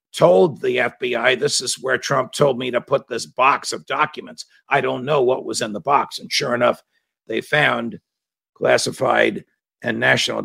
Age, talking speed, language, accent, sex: 50-69, 180 wpm, English, American, male